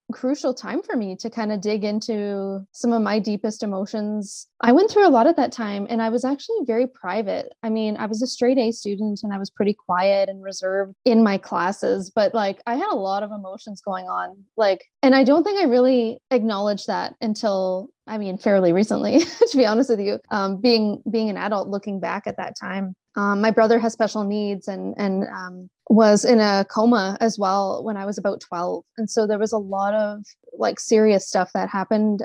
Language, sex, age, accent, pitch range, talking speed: English, female, 20-39, American, 195-225 Hz, 220 wpm